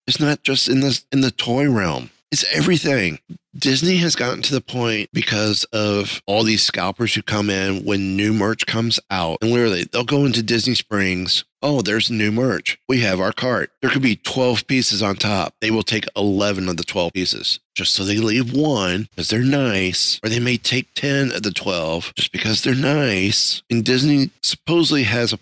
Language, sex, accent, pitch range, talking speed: English, male, American, 95-120 Hz, 200 wpm